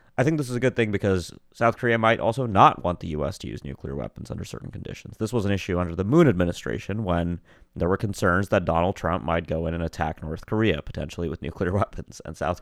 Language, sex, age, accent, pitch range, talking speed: English, male, 30-49, American, 85-105 Hz, 240 wpm